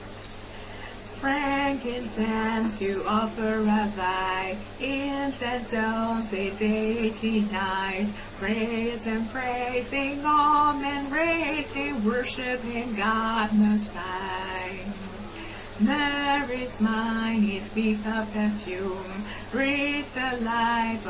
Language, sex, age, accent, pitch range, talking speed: English, female, 30-49, American, 210-245 Hz, 85 wpm